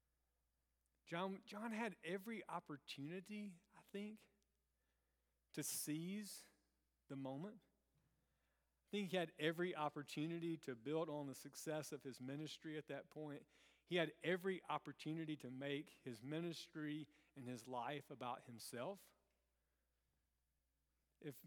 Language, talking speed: English, 115 wpm